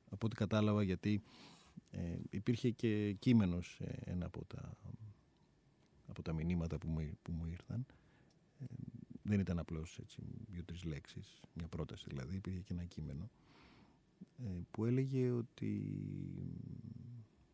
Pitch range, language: 85-125 Hz, Greek